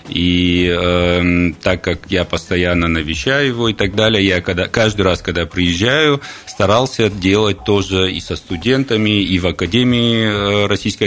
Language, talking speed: Russian, 145 wpm